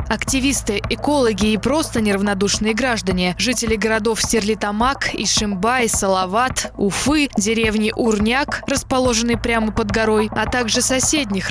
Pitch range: 210-250 Hz